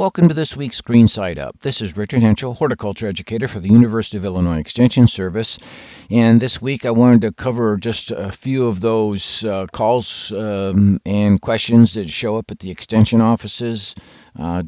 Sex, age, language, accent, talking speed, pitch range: male, 60-79, English, American, 185 wpm, 95-115 Hz